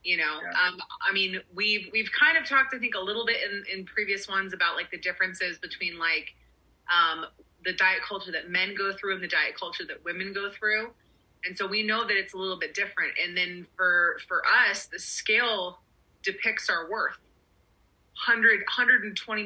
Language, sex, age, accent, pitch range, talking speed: English, female, 30-49, American, 180-215 Hz, 190 wpm